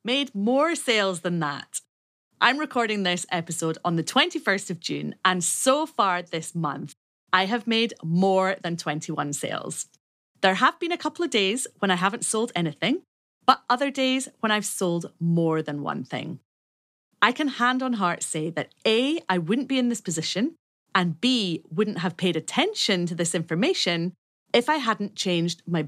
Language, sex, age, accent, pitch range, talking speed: English, female, 30-49, British, 165-230 Hz, 175 wpm